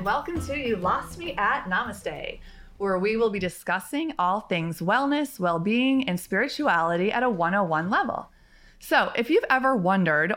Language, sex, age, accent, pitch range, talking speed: English, female, 30-49, American, 185-265 Hz, 155 wpm